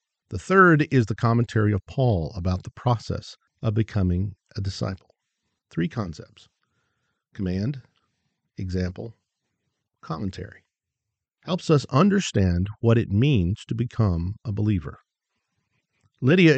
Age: 50-69